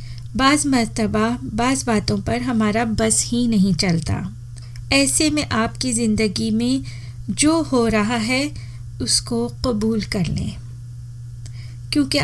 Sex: female